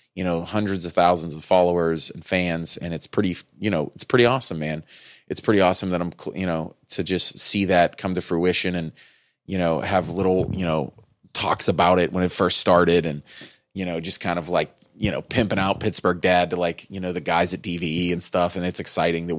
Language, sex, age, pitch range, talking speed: English, male, 30-49, 85-105 Hz, 225 wpm